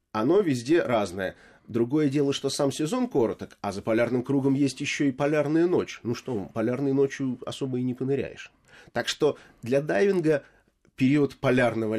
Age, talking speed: 30-49, 160 wpm